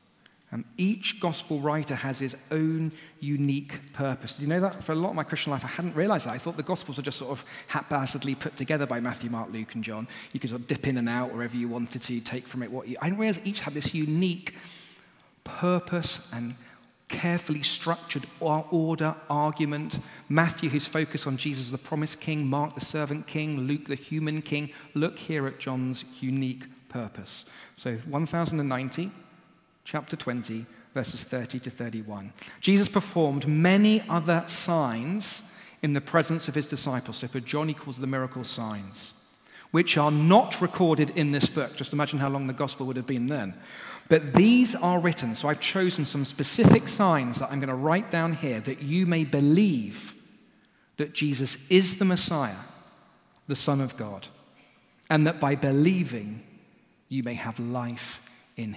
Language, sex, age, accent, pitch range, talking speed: English, male, 40-59, British, 130-165 Hz, 180 wpm